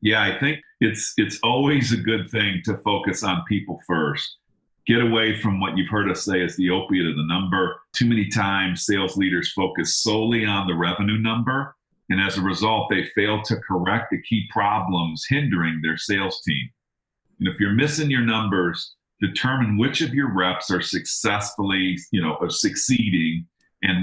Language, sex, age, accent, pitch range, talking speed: English, male, 40-59, American, 90-115 Hz, 180 wpm